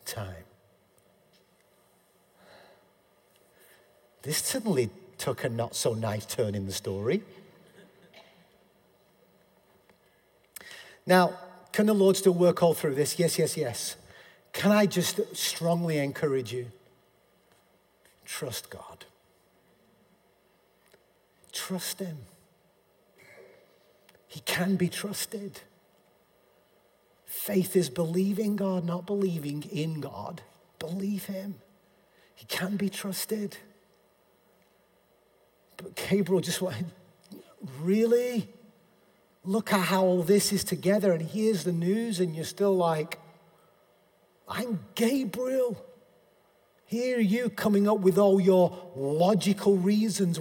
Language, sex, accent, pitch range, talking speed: English, male, British, 160-200 Hz, 100 wpm